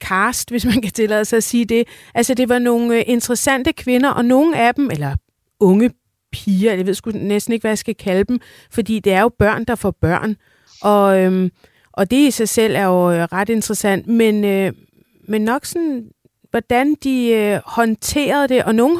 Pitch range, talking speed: 190-240 Hz, 200 wpm